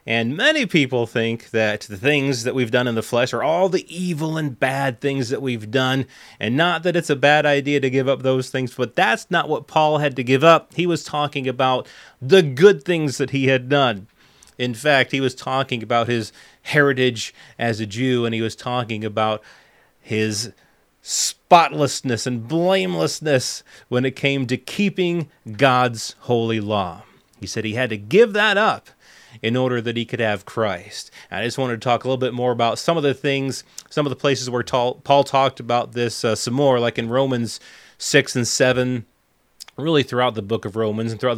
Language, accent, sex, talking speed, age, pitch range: English, American, male, 200 wpm, 30-49, 115-150 Hz